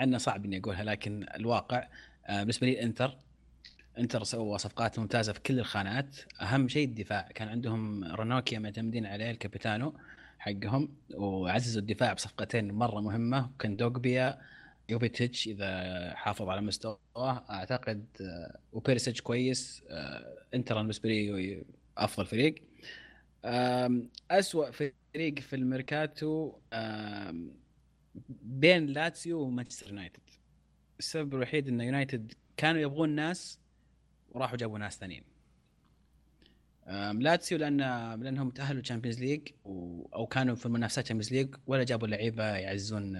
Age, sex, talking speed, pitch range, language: 20-39, male, 115 wpm, 105-130 Hz, Arabic